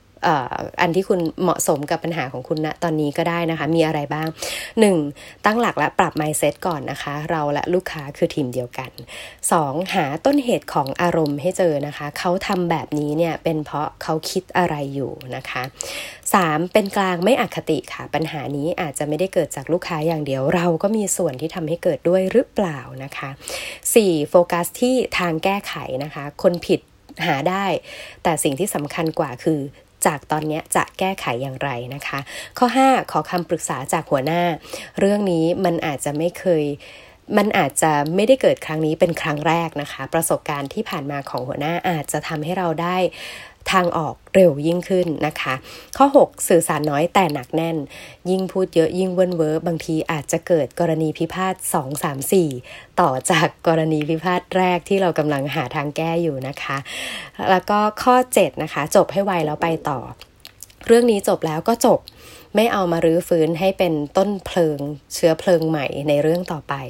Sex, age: female, 20-39